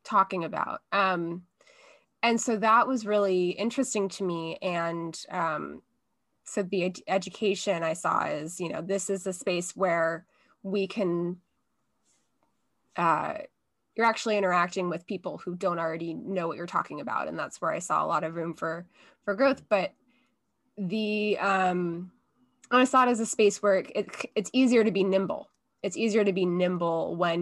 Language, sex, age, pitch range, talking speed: English, female, 20-39, 175-210 Hz, 170 wpm